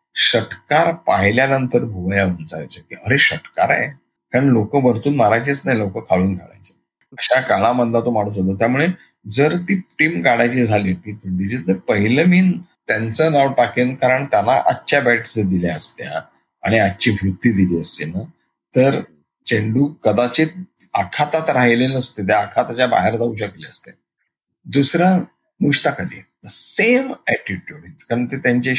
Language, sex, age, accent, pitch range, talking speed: Marathi, male, 30-49, native, 95-135 Hz, 130 wpm